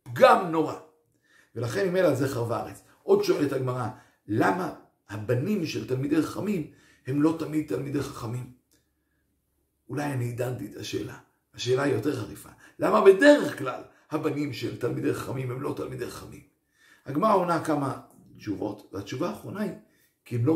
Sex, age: male, 50-69